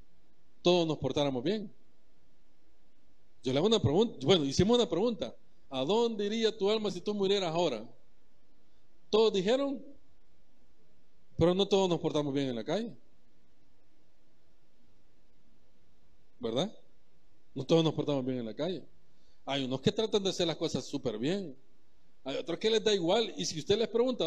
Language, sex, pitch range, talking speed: Spanish, male, 150-215 Hz, 155 wpm